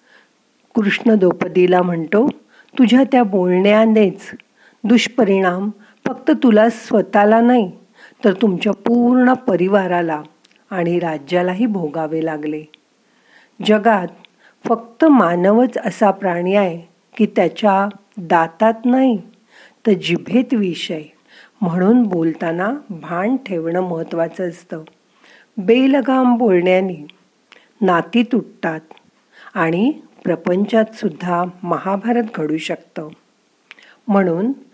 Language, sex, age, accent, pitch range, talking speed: Marathi, female, 50-69, native, 175-230 Hz, 85 wpm